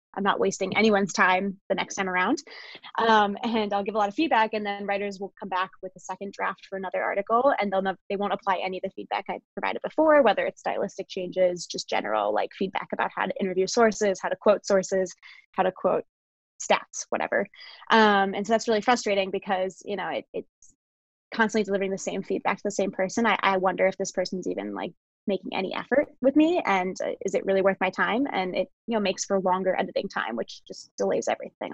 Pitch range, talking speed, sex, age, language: 190-220 Hz, 225 wpm, female, 20-39, English